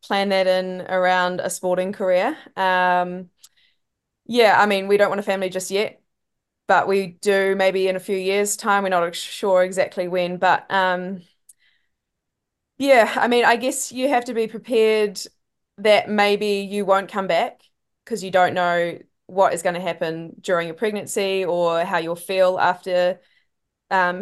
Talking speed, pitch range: 170 wpm, 175-195 Hz